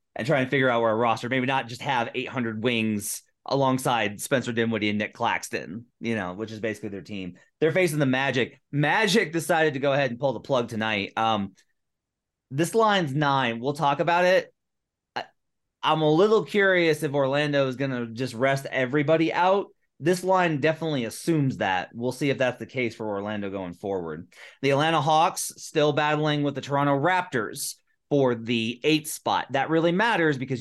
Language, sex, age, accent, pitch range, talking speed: English, male, 30-49, American, 120-160 Hz, 185 wpm